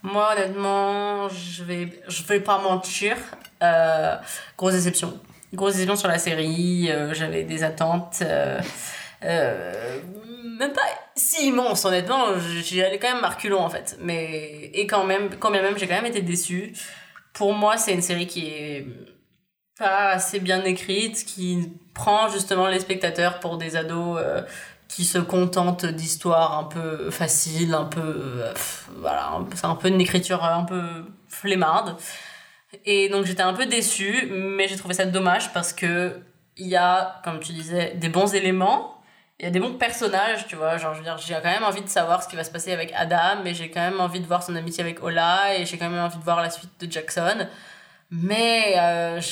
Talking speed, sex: 190 wpm, female